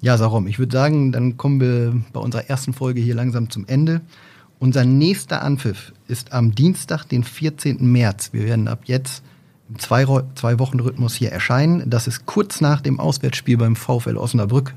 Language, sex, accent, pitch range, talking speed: German, male, German, 115-140 Hz, 175 wpm